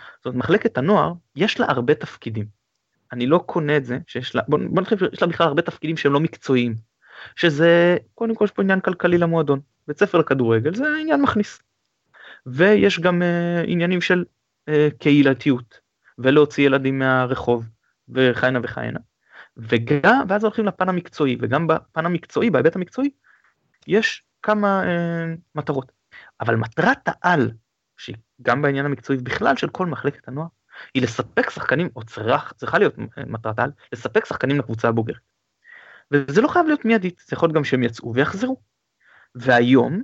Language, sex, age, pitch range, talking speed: Hebrew, male, 20-39, 125-175 Hz, 155 wpm